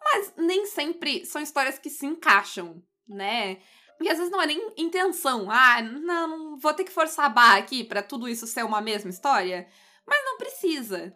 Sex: female